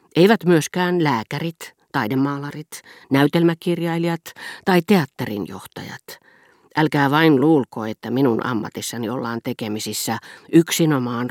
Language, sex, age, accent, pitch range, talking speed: Finnish, female, 40-59, native, 125-170 Hz, 90 wpm